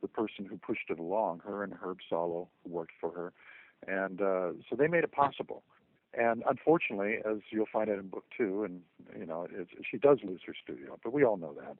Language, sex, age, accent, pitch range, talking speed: English, male, 50-69, American, 95-120 Hz, 225 wpm